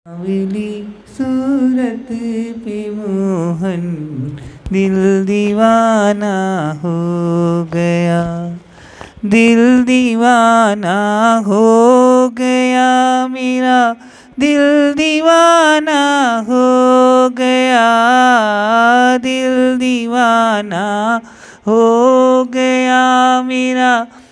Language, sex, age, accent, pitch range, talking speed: Hindi, male, 30-49, native, 205-255 Hz, 50 wpm